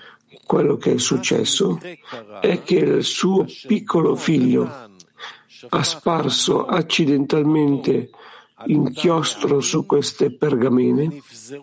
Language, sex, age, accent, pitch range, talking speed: Italian, male, 50-69, native, 145-160 Hz, 90 wpm